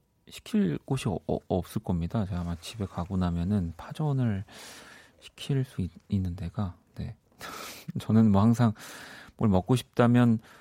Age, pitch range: 40-59, 95-125 Hz